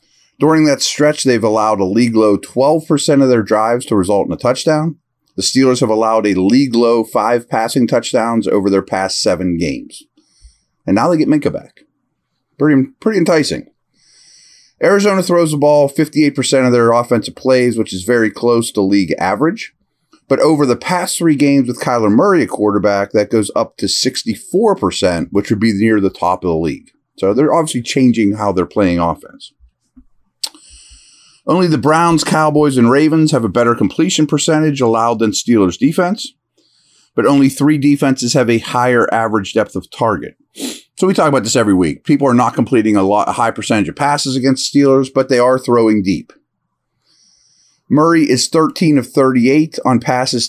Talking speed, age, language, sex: 170 wpm, 30-49, English, male